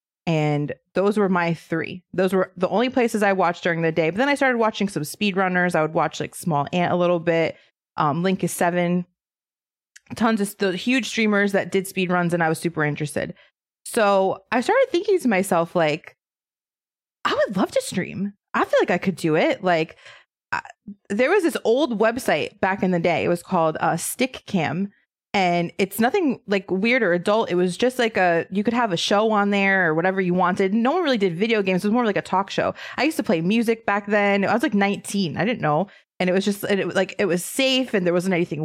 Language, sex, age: English, female, 20-39